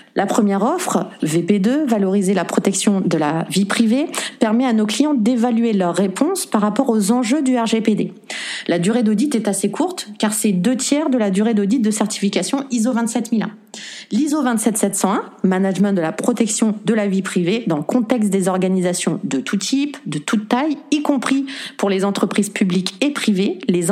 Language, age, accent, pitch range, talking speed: French, 30-49, French, 195-245 Hz, 180 wpm